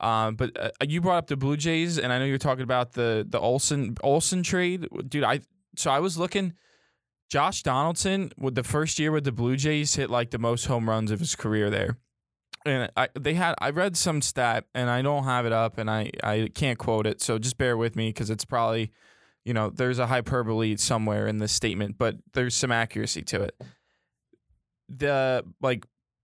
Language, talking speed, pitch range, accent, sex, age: English, 210 wpm, 115-140 Hz, American, male, 20-39